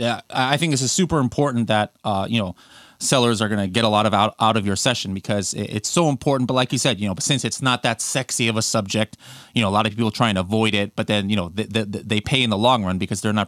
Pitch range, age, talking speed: 110-140 Hz, 30-49, 295 wpm